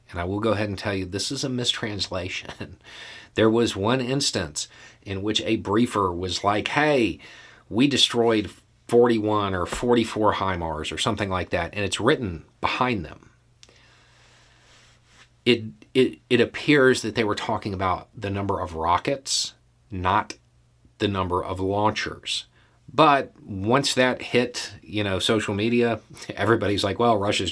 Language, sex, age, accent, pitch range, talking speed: English, male, 40-59, American, 95-120 Hz, 150 wpm